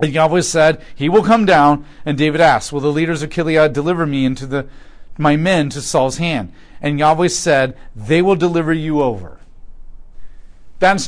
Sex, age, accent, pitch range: male, 40-59, American, 125-165 Hz